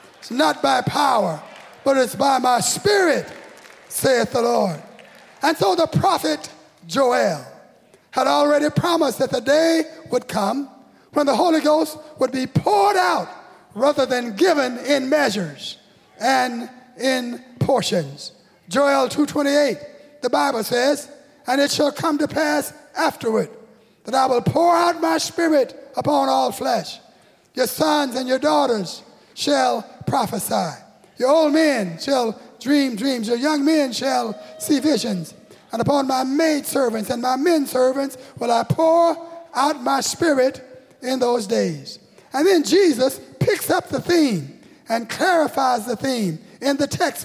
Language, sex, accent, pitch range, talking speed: English, male, American, 245-300 Hz, 145 wpm